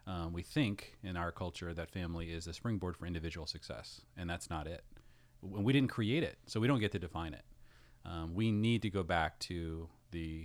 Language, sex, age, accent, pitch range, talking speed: English, male, 30-49, American, 85-105 Hz, 220 wpm